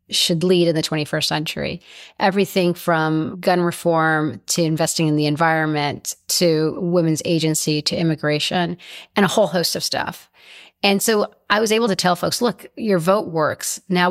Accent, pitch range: American, 160-195 Hz